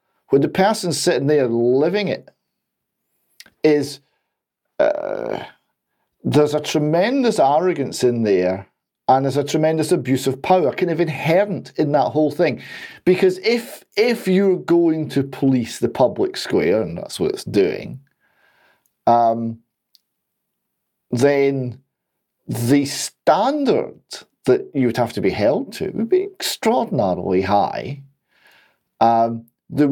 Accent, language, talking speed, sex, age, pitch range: British, English, 125 wpm, male, 50-69, 115-170 Hz